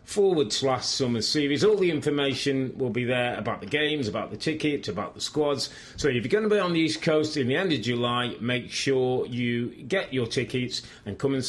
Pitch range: 125-170 Hz